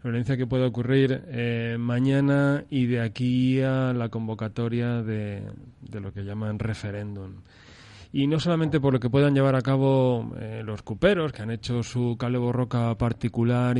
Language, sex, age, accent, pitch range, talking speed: Spanish, male, 20-39, Spanish, 115-135 Hz, 170 wpm